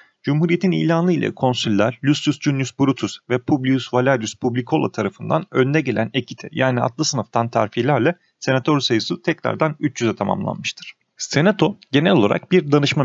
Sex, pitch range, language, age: male, 120-160 Hz, Turkish, 40-59